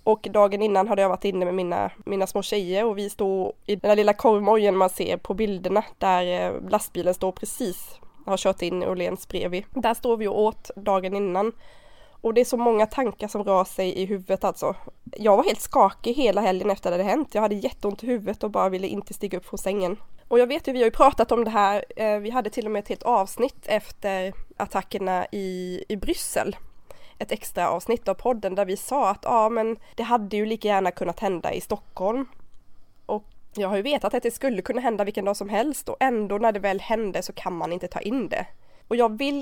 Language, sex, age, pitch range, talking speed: Swedish, female, 20-39, 195-235 Hz, 225 wpm